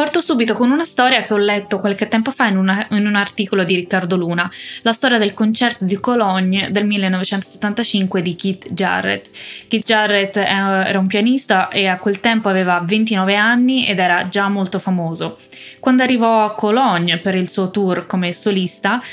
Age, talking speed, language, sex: 20-39, 180 wpm, Italian, female